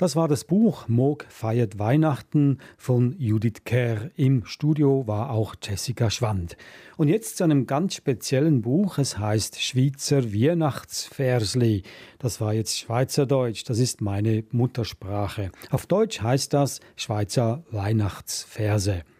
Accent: German